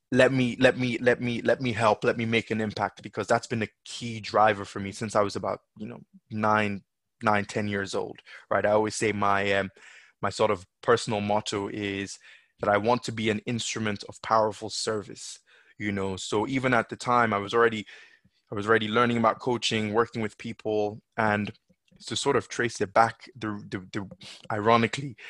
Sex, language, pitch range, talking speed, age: male, English, 105-120 Hz, 200 wpm, 20-39